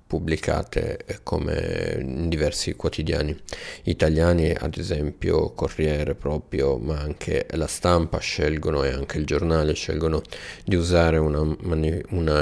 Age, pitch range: 30-49, 75-85 Hz